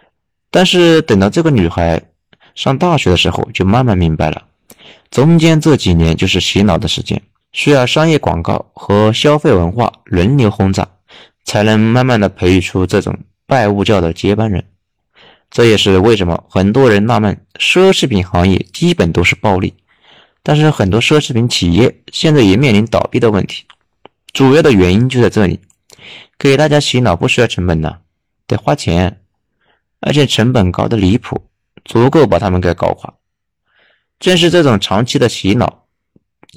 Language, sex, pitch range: Chinese, male, 90-130 Hz